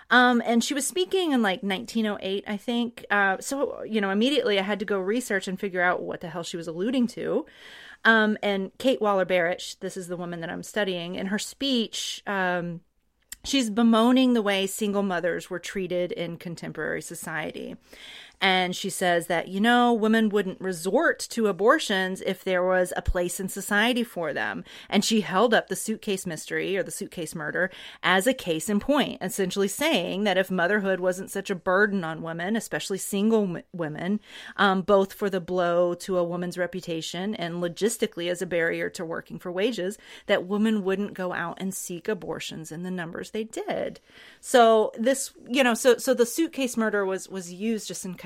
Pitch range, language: 180-225 Hz, English